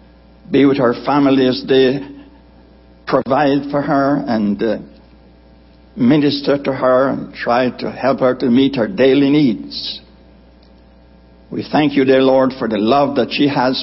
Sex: male